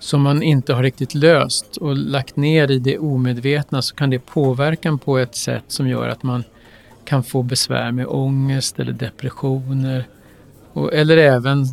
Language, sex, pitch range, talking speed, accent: Swedish, male, 125-140 Hz, 165 wpm, native